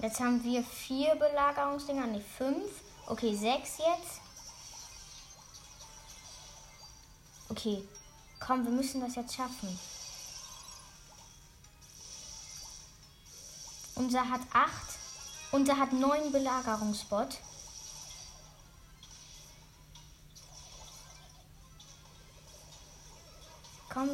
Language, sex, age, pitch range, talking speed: German, female, 10-29, 245-355 Hz, 65 wpm